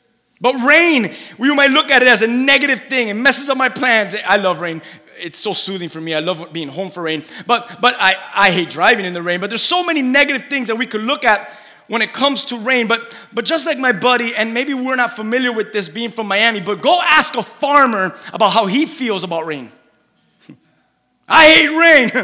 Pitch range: 170-245 Hz